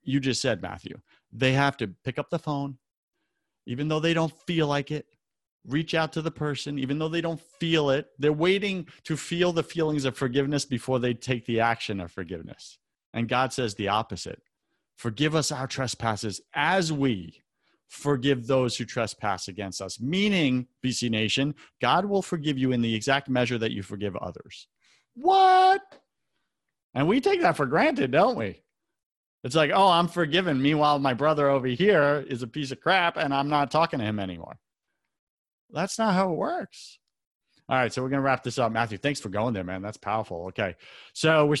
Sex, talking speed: male, 190 wpm